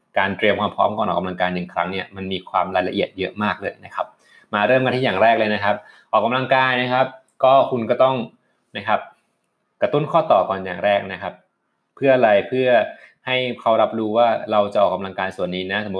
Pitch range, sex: 95-120 Hz, male